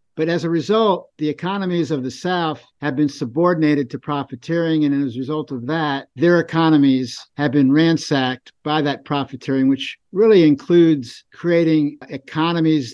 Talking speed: 155 wpm